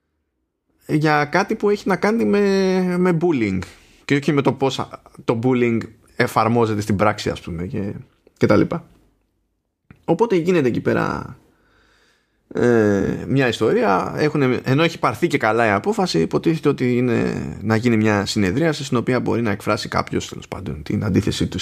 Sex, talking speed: male, 160 wpm